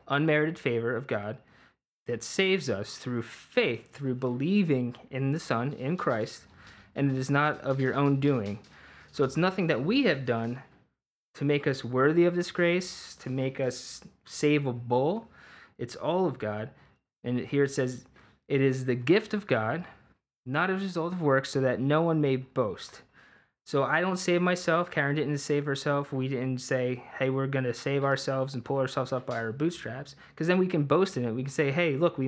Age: 20-39